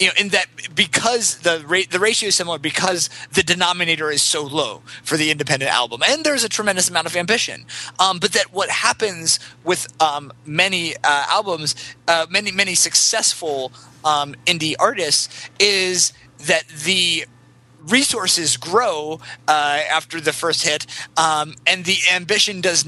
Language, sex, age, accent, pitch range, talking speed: English, male, 30-49, American, 145-180 Hz, 155 wpm